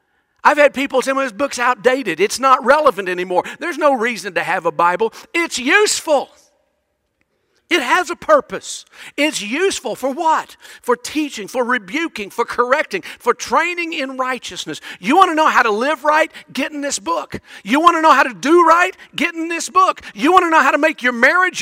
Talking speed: 200 wpm